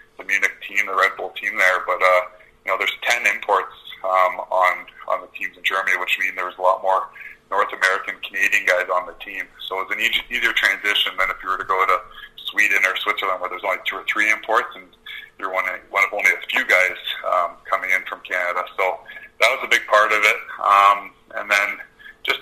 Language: English